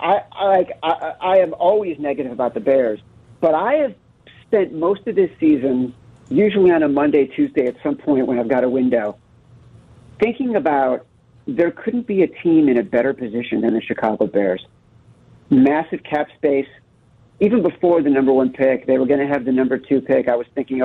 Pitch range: 120-145 Hz